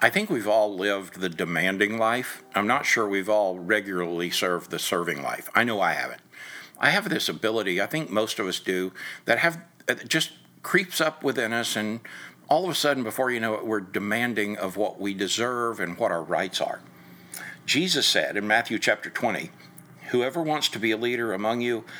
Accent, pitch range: American, 95-115 Hz